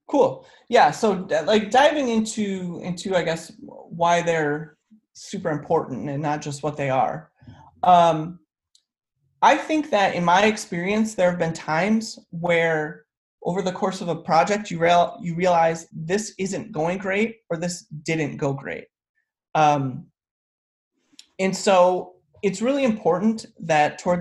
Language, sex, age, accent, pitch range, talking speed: English, male, 30-49, American, 160-200 Hz, 145 wpm